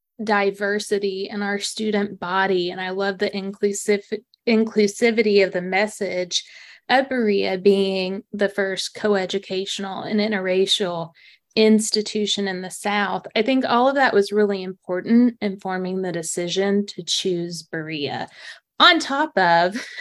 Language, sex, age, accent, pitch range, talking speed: English, female, 20-39, American, 190-225 Hz, 130 wpm